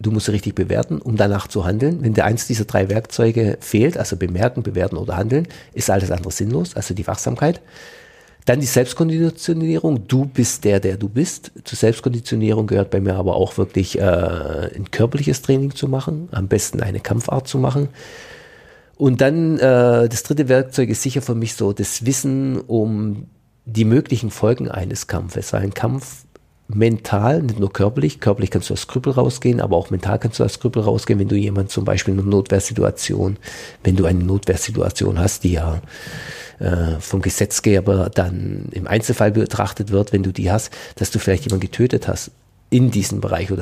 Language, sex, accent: German, male, German